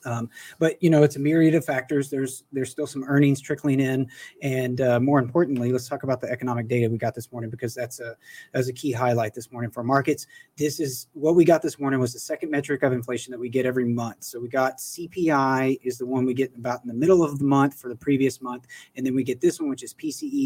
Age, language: 30-49, English